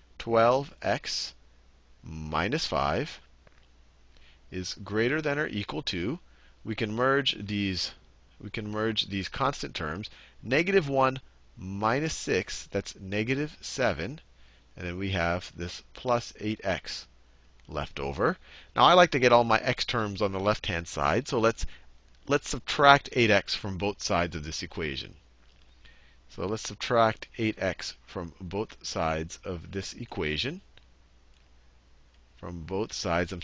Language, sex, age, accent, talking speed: English, male, 40-59, American, 140 wpm